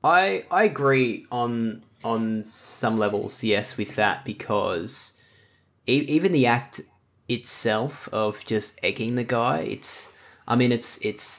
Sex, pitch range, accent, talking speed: male, 100-115 Hz, Australian, 135 wpm